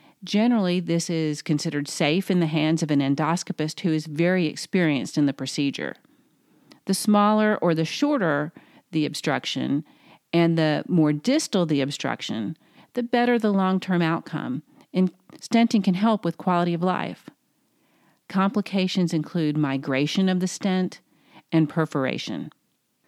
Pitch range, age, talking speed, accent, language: 160-205 Hz, 40-59, 135 wpm, American, English